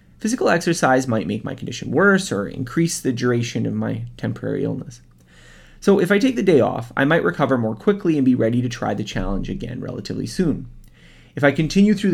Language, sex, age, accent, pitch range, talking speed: English, male, 30-49, American, 105-145 Hz, 205 wpm